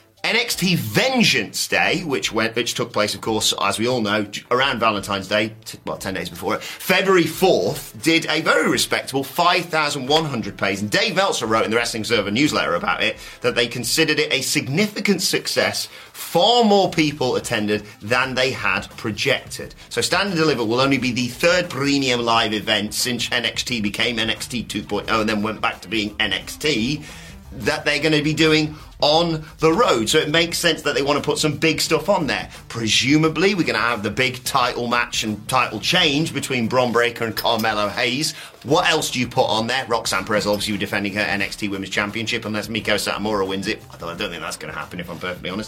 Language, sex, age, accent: English, male, 30-49, British